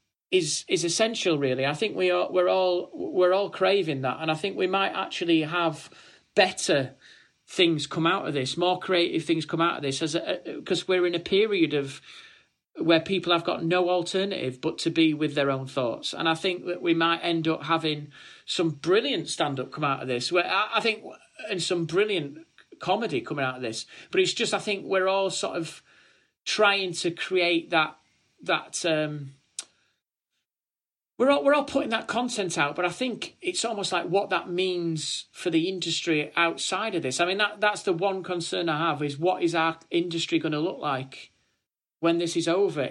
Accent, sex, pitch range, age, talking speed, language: British, male, 160-190 Hz, 40-59, 200 wpm, English